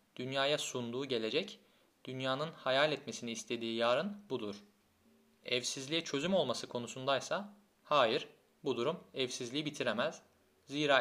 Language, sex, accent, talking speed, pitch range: Turkish, male, native, 105 wpm, 120-155 Hz